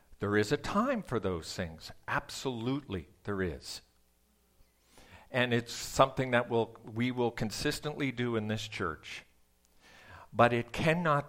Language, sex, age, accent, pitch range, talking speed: English, male, 50-69, American, 105-130 Hz, 130 wpm